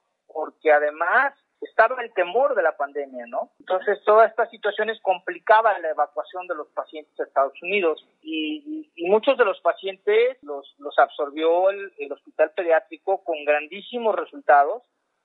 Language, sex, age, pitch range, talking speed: Spanish, male, 40-59, 150-200 Hz, 150 wpm